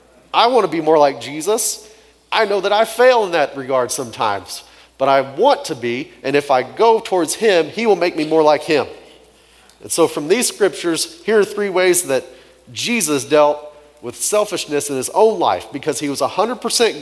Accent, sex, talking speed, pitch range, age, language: American, male, 200 wpm, 120-170 Hz, 40-59, English